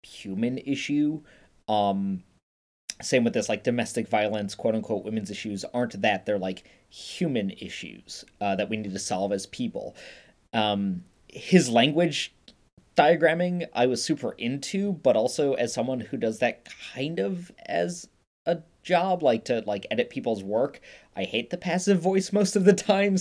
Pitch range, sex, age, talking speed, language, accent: 115-175 Hz, male, 20-39, 160 wpm, English, American